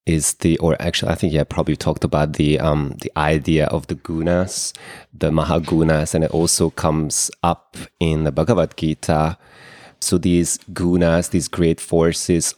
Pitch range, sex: 80-90 Hz, male